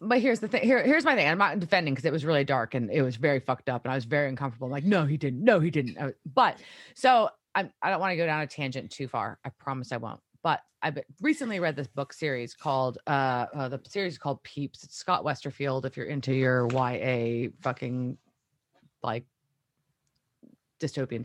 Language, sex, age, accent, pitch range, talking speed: English, female, 30-49, American, 130-185 Hz, 225 wpm